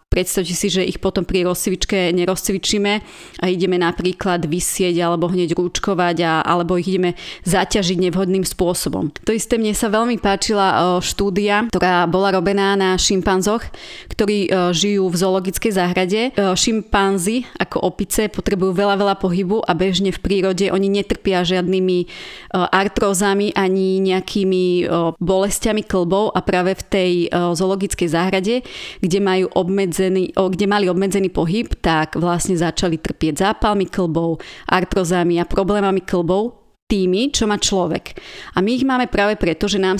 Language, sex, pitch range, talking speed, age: Slovak, female, 180-205 Hz, 140 wpm, 30-49